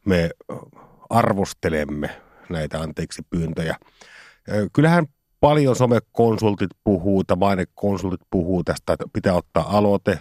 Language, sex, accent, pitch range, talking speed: Finnish, male, native, 90-125 Hz, 100 wpm